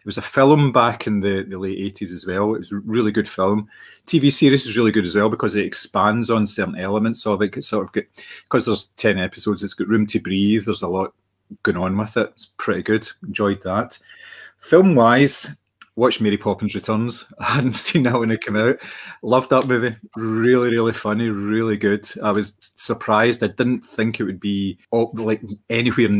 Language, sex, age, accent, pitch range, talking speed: English, male, 30-49, British, 100-115 Hz, 205 wpm